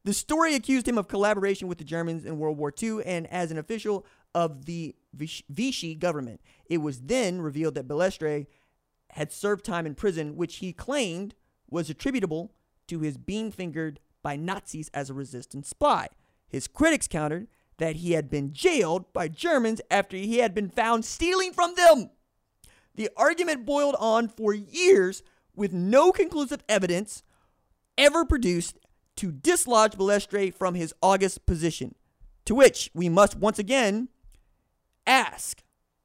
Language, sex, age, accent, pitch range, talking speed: English, male, 30-49, American, 155-255 Hz, 150 wpm